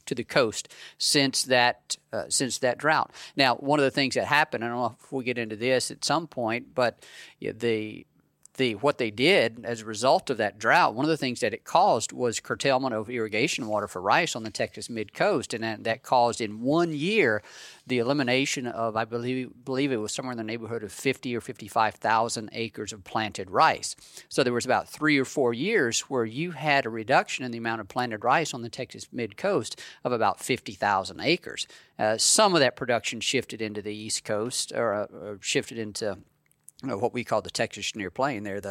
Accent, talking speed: American, 215 wpm